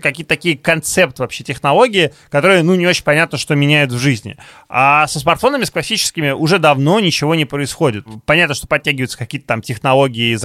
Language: Russian